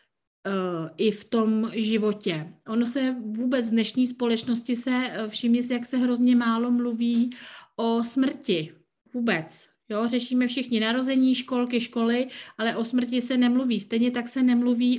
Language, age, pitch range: Czech, 50-69, 225-260 Hz